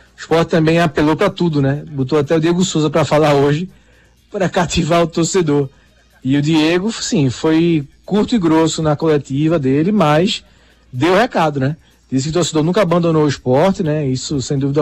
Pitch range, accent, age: 145-190 Hz, Brazilian, 20-39